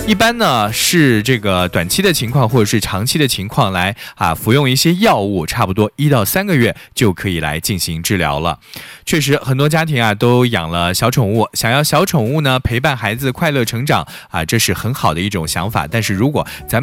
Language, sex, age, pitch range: Chinese, male, 20-39, 95-145 Hz